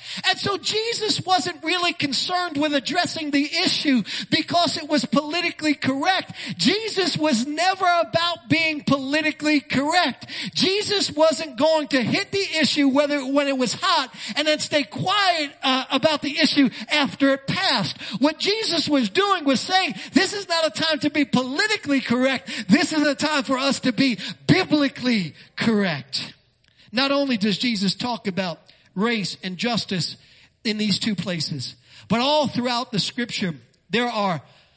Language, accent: English, American